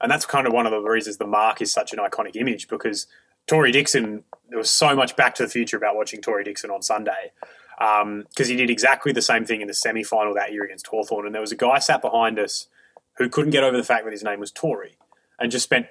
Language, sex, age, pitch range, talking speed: English, male, 20-39, 105-150 Hz, 260 wpm